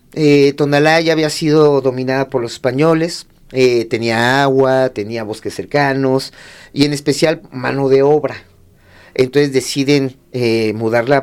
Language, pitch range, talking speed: Spanish, 120-150 Hz, 130 wpm